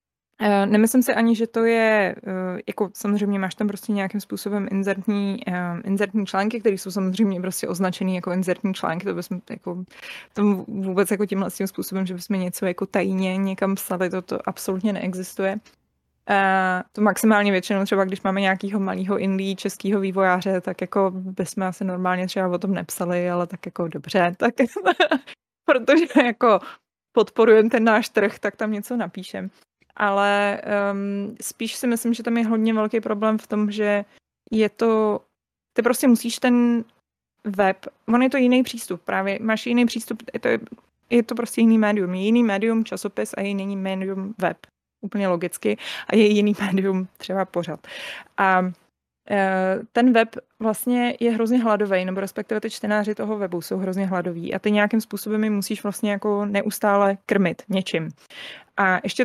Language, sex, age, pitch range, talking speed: Slovak, female, 20-39, 190-225 Hz, 165 wpm